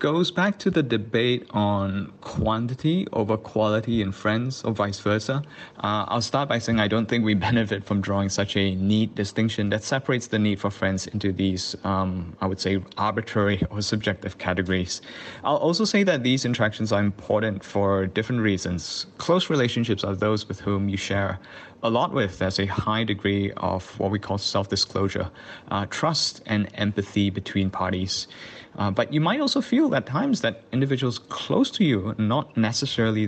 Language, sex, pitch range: English, male, 100-125 Hz